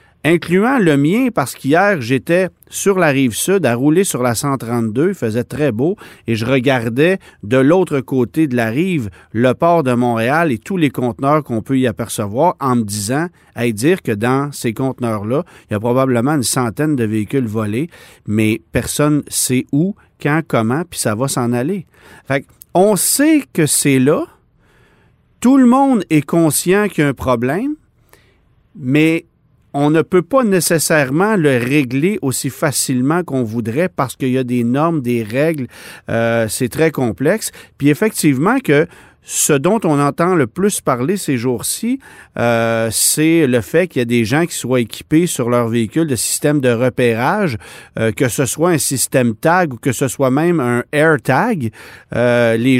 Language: French